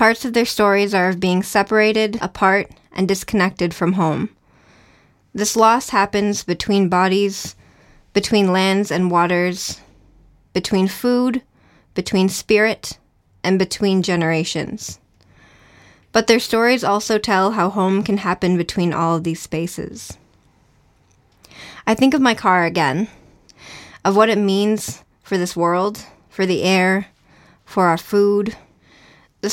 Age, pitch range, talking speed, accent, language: 20-39, 180-205 Hz, 130 wpm, American, English